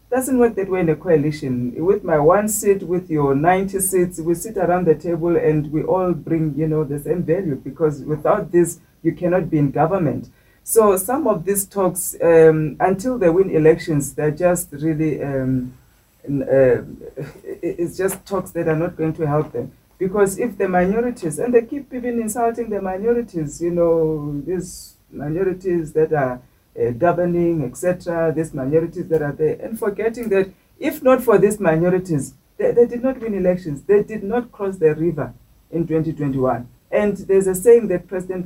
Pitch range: 150-190 Hz